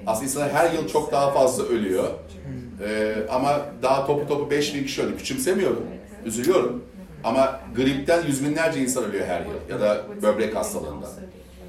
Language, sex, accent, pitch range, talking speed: Turkish, male, native, 105-145 Hz, 155 wpm